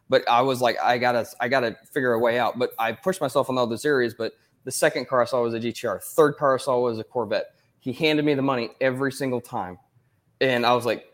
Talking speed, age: 270 wpm, 20-39